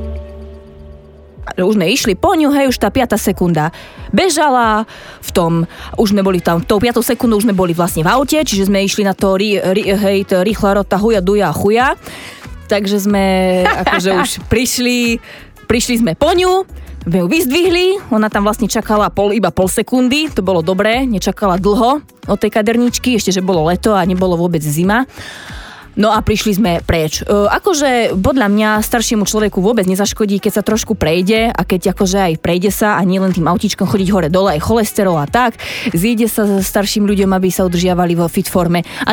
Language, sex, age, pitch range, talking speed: Slovak, female, 20-39, 180-225 Hz, 190 wpm